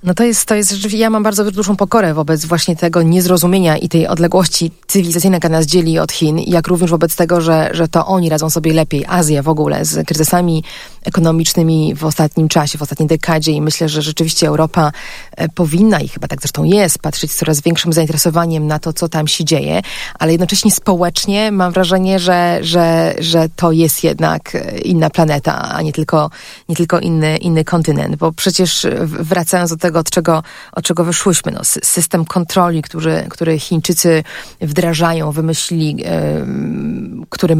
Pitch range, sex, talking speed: 160-180 Hz, female, 175 wpm